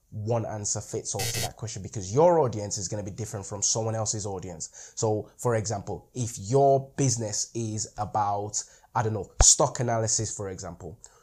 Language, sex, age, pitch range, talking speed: English, male, 20-39, 105-140 Hz, 180 wpm